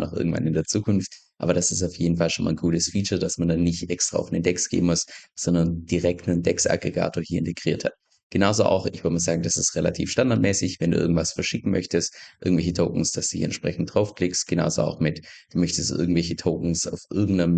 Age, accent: 20-39, German